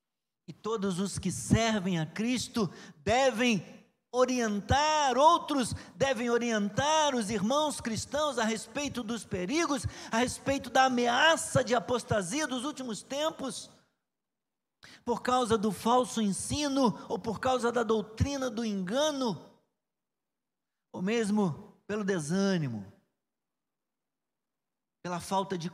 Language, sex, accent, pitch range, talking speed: Portuguese, male, Brazilian, 185-270 Hz, 110 wpm